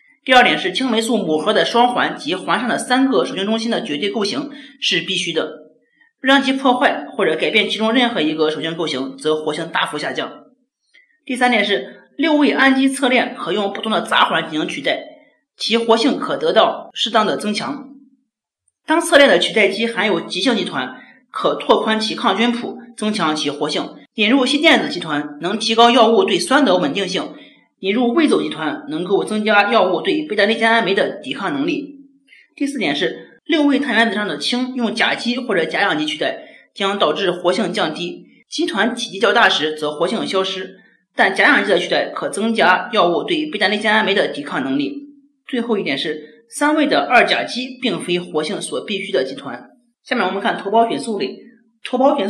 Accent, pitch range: native, 200-275 Hz